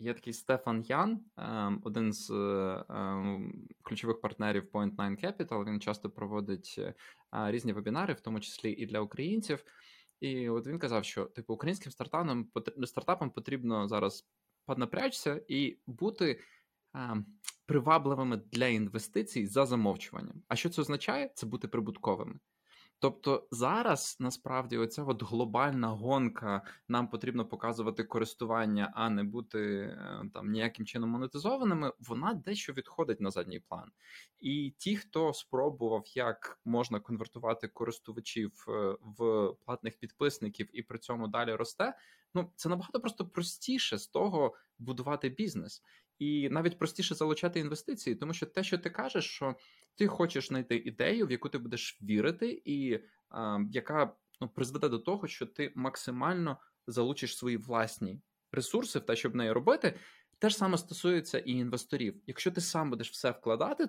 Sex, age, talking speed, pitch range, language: male, 20-39, 140 wpm, 115-170 Hz, Ukrainian